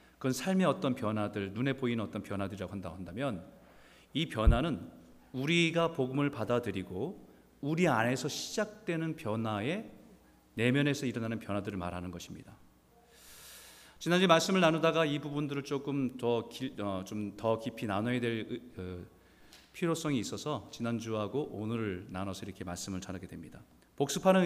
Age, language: 40-59, Korean